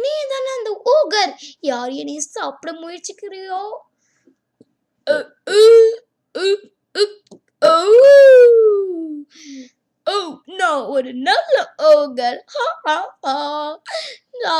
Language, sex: Tamil, female